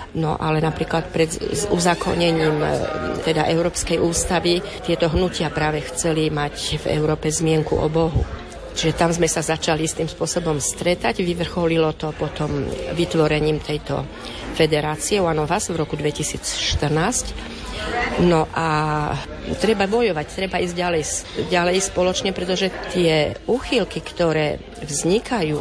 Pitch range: 155-180 Hz